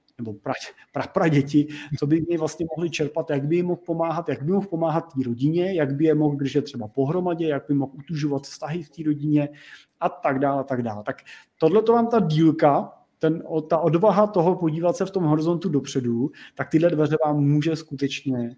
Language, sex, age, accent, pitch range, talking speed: Czech, male, 30-49, native, 135-165 Hz, 215 wpm